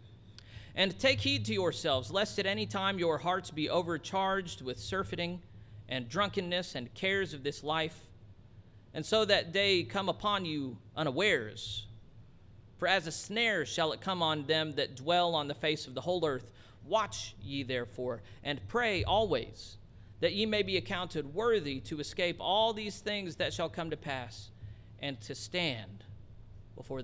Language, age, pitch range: English, 40-59, 110-180 Hz